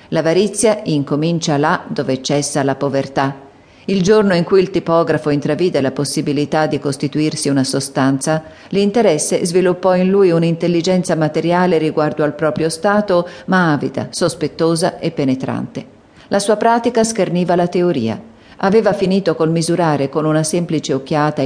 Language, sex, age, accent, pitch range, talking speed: Italian, female, 40-59, native, 145-180 Hz, 135 wpm